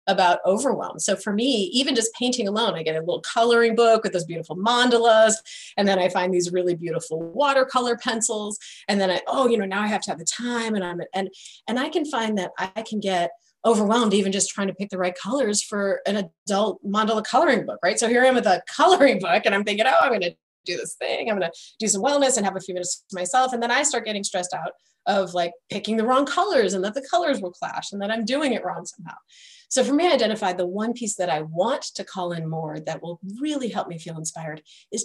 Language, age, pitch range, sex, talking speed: English, 30-49, 185-245 Hz, female, 255 wpm